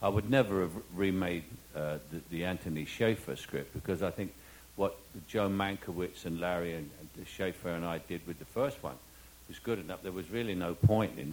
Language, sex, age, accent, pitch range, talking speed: English, male, 60-79, British, 80-110 Hz, 200 wpm